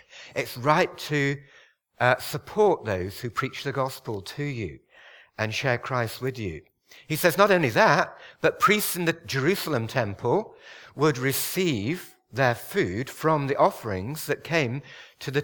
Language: English